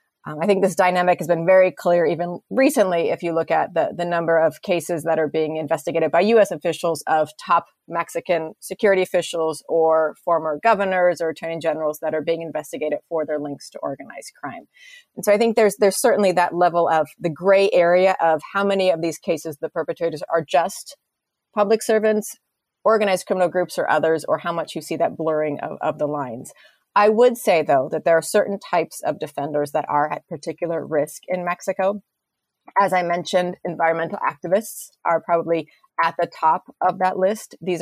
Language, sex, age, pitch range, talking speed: English, female, 30-49, 160-190 Hz, 190 wpm